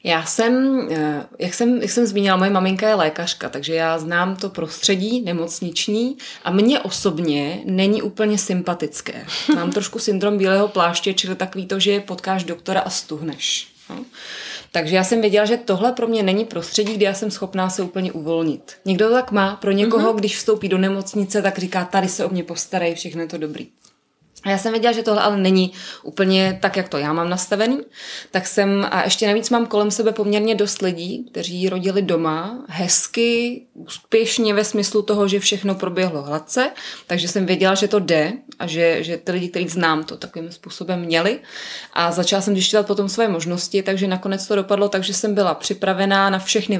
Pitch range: 175-210 Hz